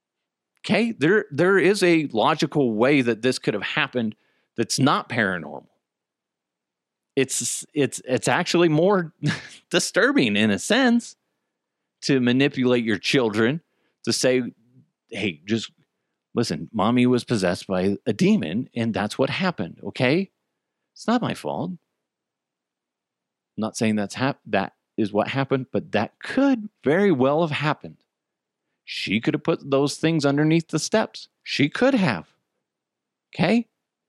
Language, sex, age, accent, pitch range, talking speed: English, male, 40-59, American, 115-185 Hz, 135 wpm